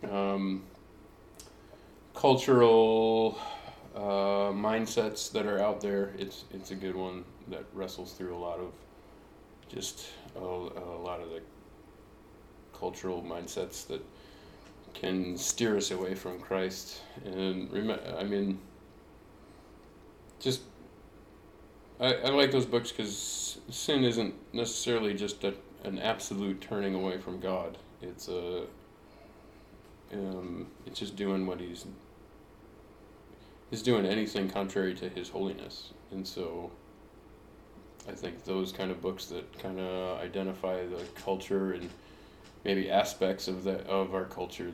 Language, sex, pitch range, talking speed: English, male, 90-105 Hz, 125 wpm